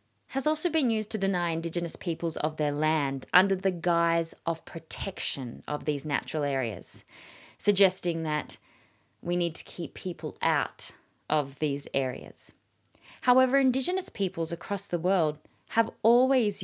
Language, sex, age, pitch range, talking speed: English, female, 20-39, 155-225 Hz, 140 wpm